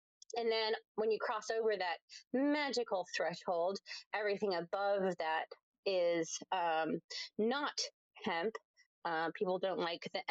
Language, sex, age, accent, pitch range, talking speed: English, female, 30-49, American, 170-220 Hz, 120 wpm